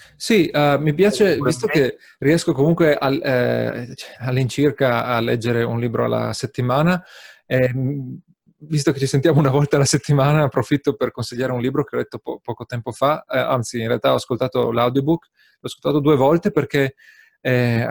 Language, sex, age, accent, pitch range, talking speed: Italian, male, 30-49, native, 120-150 Hz, 170 wpm